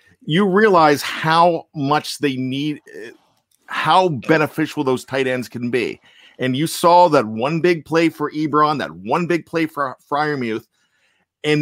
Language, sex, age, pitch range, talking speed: English, male, 40-59, 130-180 Hz, 155 wpm